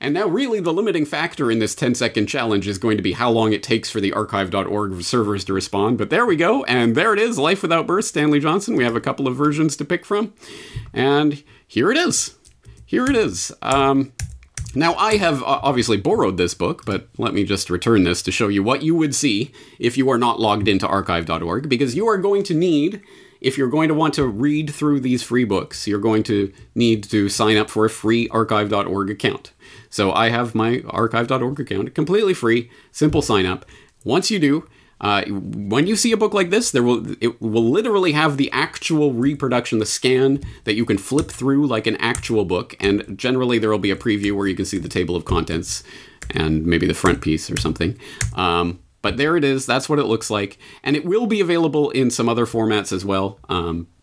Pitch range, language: 100-140 Hz, English